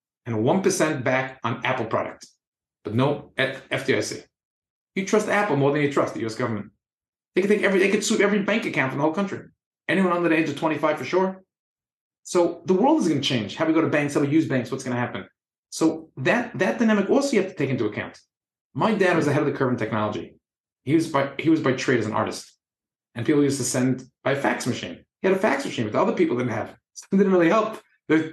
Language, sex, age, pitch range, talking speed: English, male, 30-49, 130-185 Hz, 250 wpm